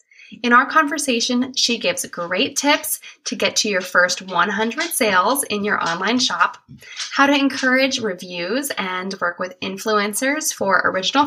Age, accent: 10-29, American